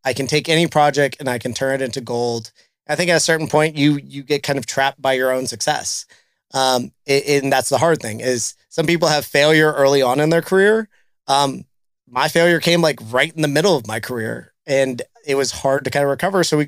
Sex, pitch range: male, 135-160 Hz